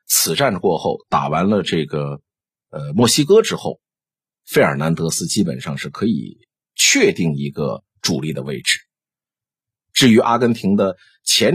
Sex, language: male, Chinese